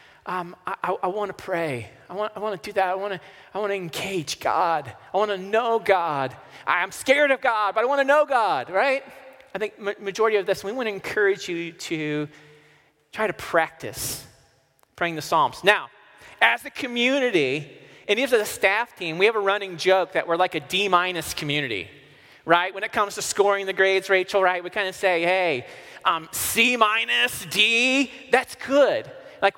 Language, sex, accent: English, male, American